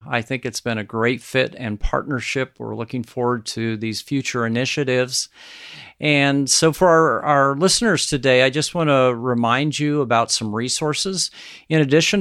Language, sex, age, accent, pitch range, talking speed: English, male, 50-69, American, 125-150 Hz, 165 wpm